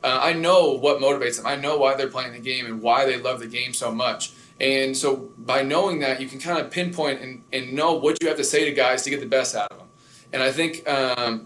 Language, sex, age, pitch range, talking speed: English, male, 20-39, 130-150 Hz, 270 wpm